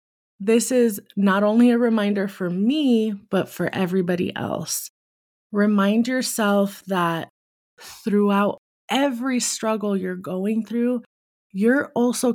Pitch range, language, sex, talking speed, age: 180-210 Hz, English, female, 110 wpm, 20-39